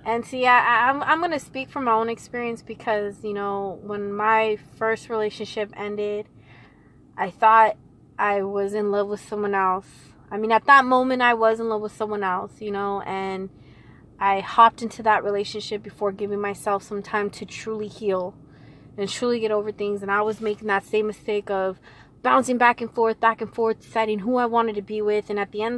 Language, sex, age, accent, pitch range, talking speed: English, female, 20-39, American, 205-230 Hz, 200 wpm